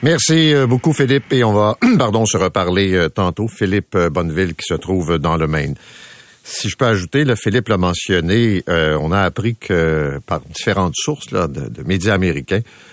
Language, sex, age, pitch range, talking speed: French, male, 50-69, 95-125 Hz, 180 wpm